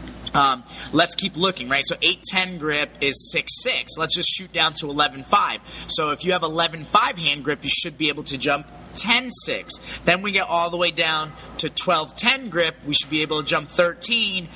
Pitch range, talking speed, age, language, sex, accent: 145-185 Hz, 200 wpm, 30-49, English, male, American